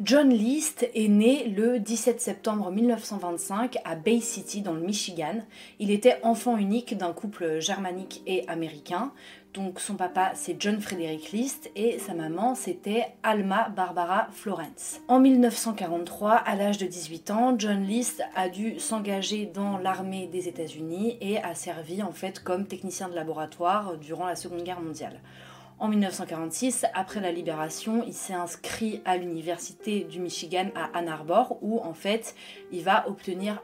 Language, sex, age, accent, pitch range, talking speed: French, female, 30-49, French, 175-225 Hz, 160 wpm